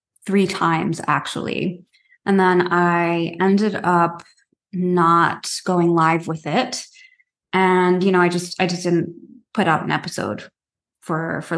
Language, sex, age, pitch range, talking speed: English, female, 20-39, 175-210 Hz, 140 wpm